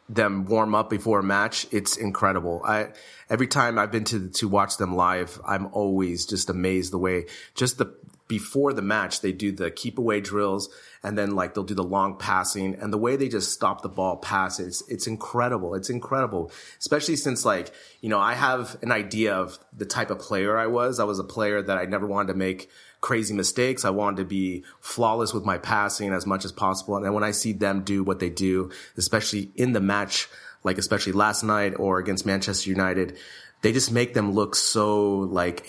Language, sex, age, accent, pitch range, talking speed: English, male, 30-49, American, 95-115 Hz, 210 wpm